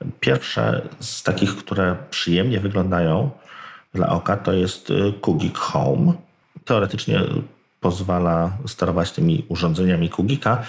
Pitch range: 85-125 Hz